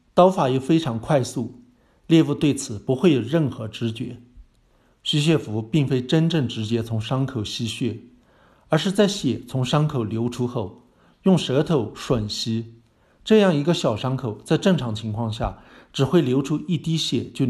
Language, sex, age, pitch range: Chinese, male, 50-69, 115-150 Hz